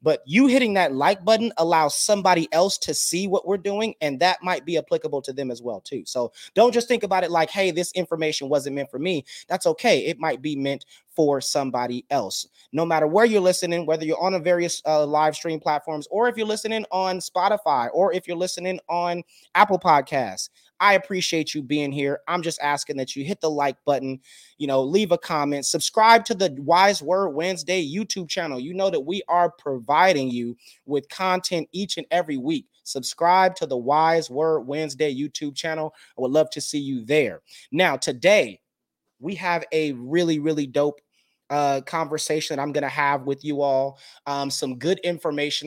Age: 30-49